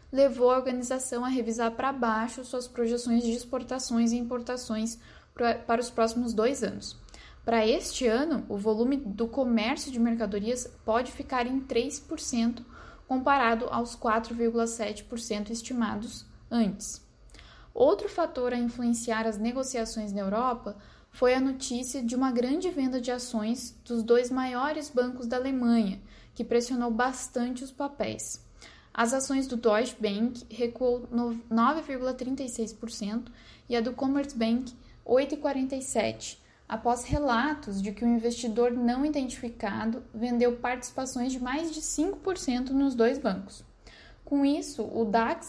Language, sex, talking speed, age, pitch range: Portuguese, female, 130 wpm, 10-29, 230-265 Hz